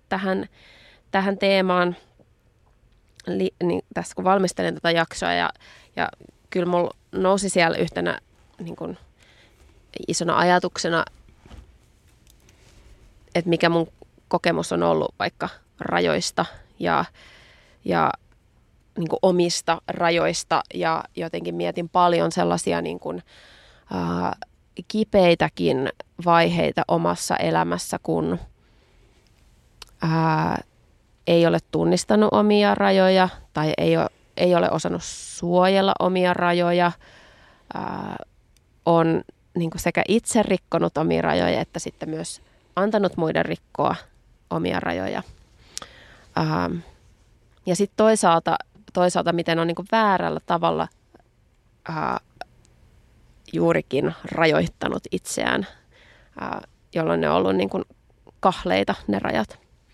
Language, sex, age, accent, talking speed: Finnish, female, 20-39, native, 100 wpm